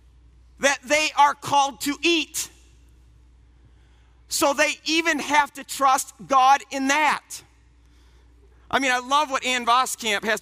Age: 50-69